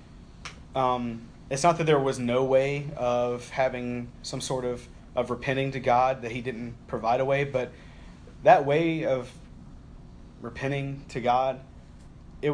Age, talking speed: 30-49, 150 wpm